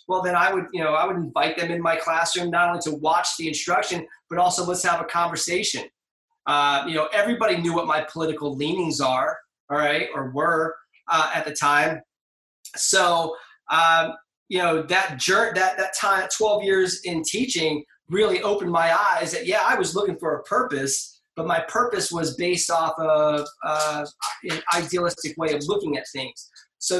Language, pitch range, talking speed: English, 160-185 Hz, 185 wpm